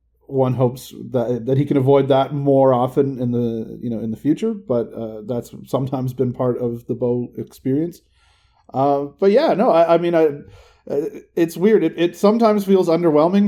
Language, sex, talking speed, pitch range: English, male, 190 wpm, 130-155 Hz